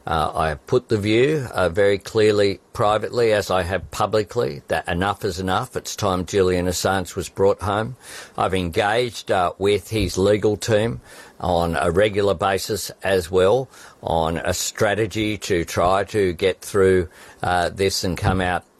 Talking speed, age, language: 165 wpm, 50-69, Arabic